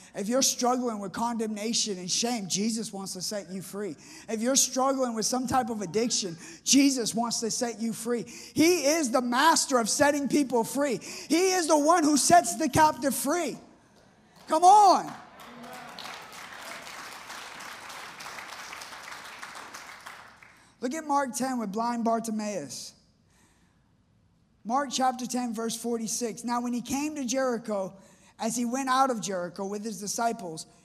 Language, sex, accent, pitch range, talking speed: English, male, American, 210-260 Hz, 140 wpm